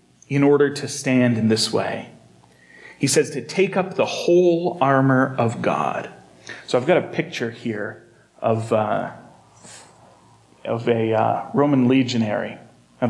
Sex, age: male, 40-59